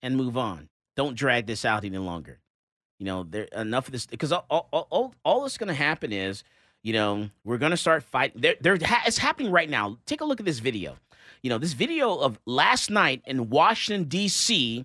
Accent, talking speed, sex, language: American, 220 wpm, male, English